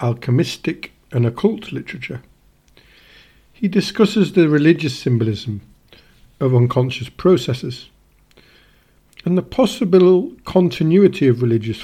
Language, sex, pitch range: English, male, 125-175 Hz